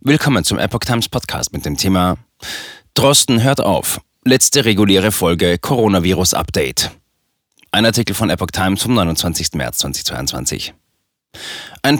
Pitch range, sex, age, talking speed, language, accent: 85-110 Hz, male, 30-49, 130 wpm, German, German